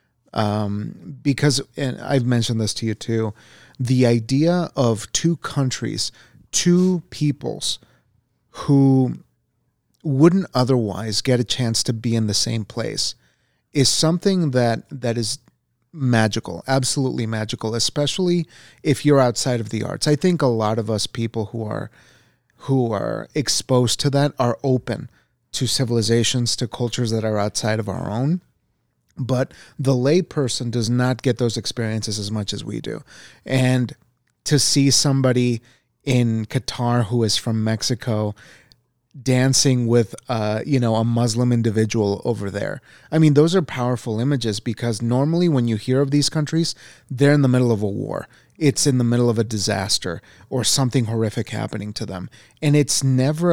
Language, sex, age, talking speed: English, male, 30-49, 155 wpm